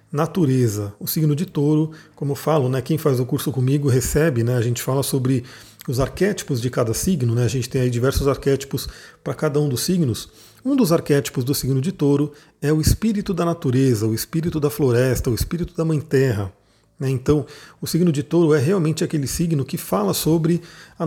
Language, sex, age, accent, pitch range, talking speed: Portuguese, male, 40-59, Brazilian, 130-165 Hz, 205 wpm